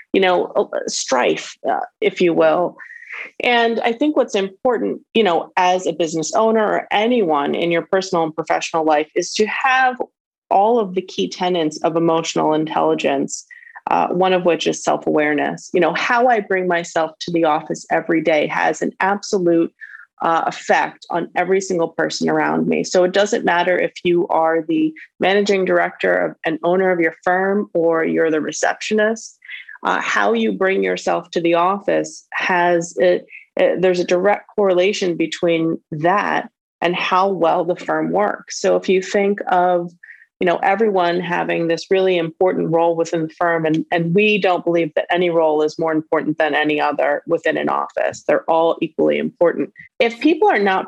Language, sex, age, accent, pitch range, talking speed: English, female, 30-49, American, 165-205 Hz, 175 wpm